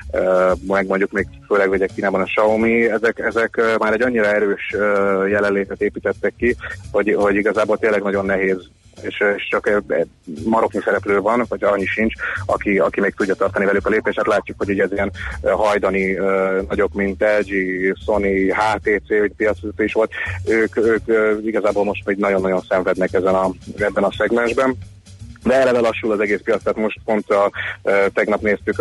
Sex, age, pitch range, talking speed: male, 30-49, 95-110 Hz, 160 wpm